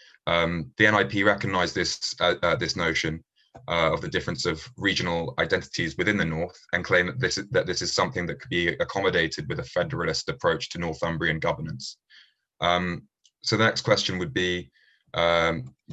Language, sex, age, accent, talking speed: English, male, 20-39, British, 170 wpm